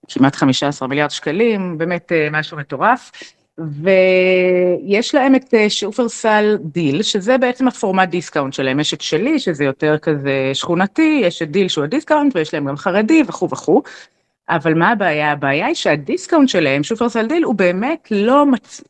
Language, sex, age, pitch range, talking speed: Hebrew, female, 30-49, 150-215 Hz, 150 wpm